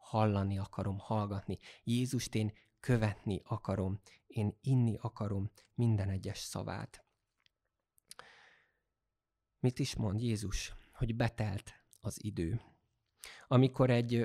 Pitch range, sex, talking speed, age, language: 105-125 Hz, male, 95 wpm, 20-39, Hungarian